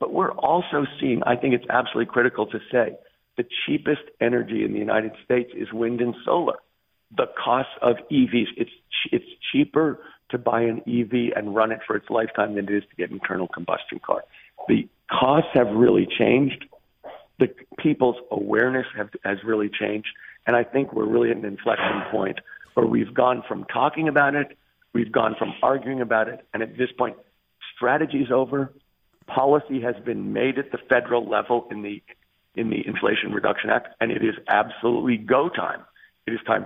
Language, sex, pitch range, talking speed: English, male, 110-135 Hz, 185 wpm